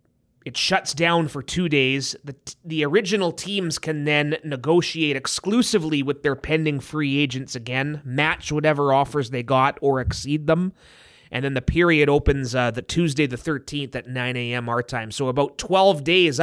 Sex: male